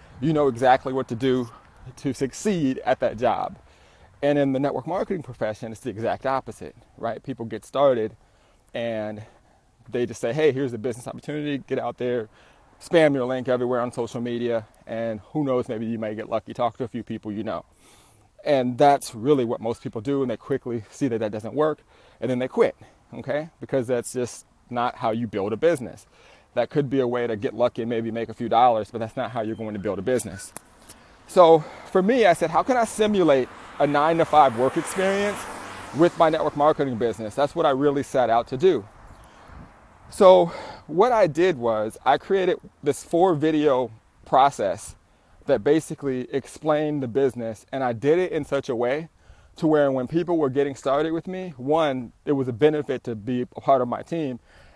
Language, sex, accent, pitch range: English, male, American, 115-145 Hz